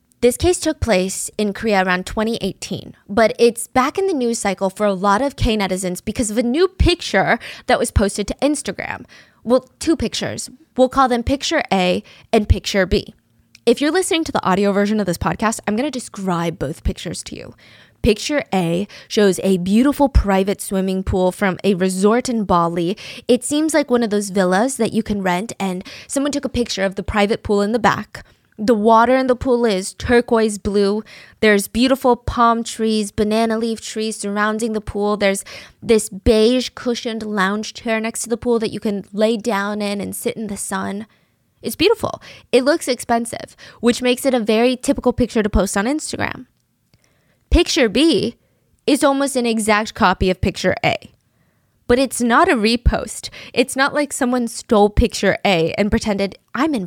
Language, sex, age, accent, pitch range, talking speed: English, female, 10-29, American, 200-250 Hz, 185 wpm